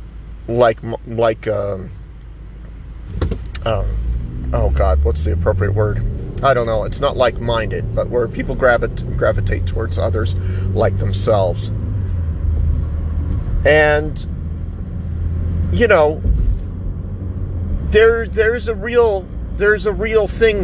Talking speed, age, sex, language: 110 wpm, 40-59, male, English